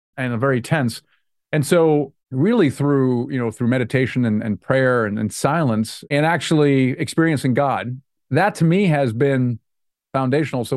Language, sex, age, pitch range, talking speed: English, male, 40-59, 125-150 Hz, 155 wpm